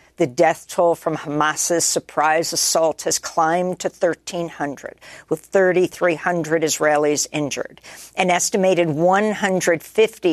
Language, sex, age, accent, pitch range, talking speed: English, female, 50-69, American, 150-185 Hz, 105 wpm